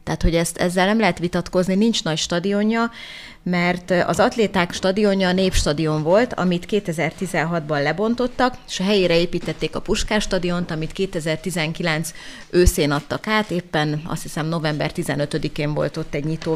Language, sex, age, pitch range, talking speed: Hungarian, female, 30-49, 160-200 Hz, 145 wpm